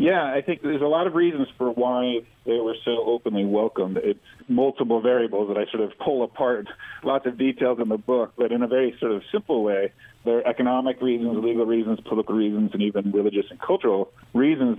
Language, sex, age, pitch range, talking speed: English, male, 40-59, 100-125 Hz, 210 wpm